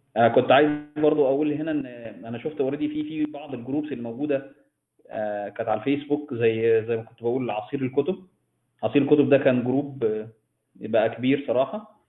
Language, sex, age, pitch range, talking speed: Arabic, male, 20-39, 120-150 Hz, 165 wpm